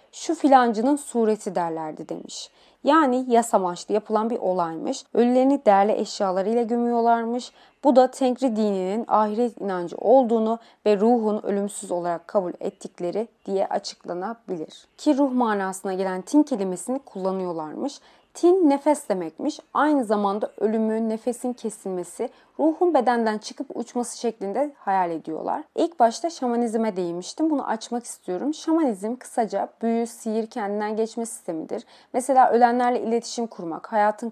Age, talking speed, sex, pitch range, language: 30-49, 120 wpm, female, 200-255 Hz, Turkish